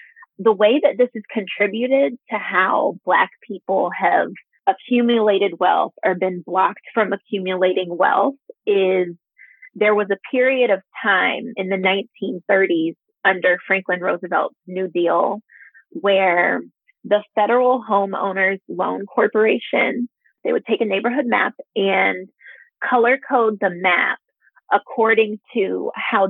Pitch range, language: 190-250 Hz, English